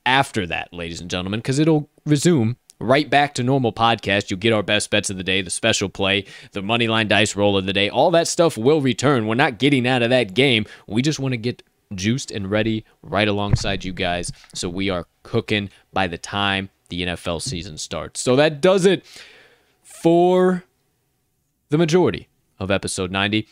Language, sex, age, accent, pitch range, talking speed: English, male, 20-39, American, 100-135 Hz, 195 wpm